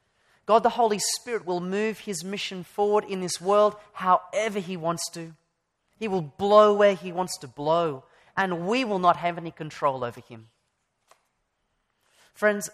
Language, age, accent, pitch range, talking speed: English, 30-49, Australian, 170-215 Hz, 160 wpm